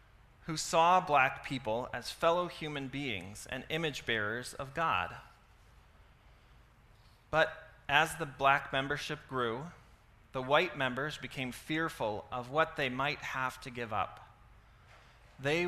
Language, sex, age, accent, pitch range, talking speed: English, male, 30-49, American, 115-150 Hz, 125 wpm